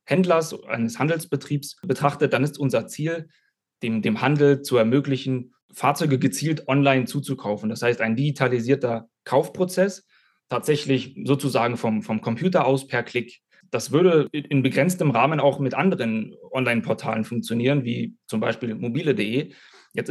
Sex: male